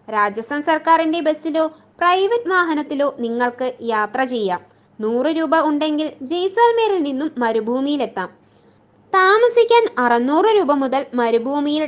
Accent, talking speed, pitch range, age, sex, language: native, 100 wpm, 240-360 Hz, 20-39, female, Malayalam